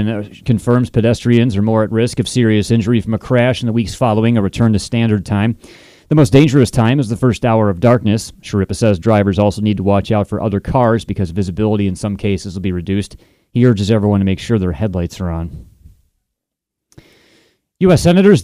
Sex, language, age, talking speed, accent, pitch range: male, English, 30-49, 205 wpm, American, 105-130 Hz